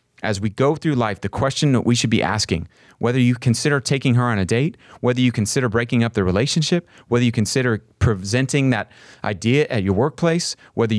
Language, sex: English, male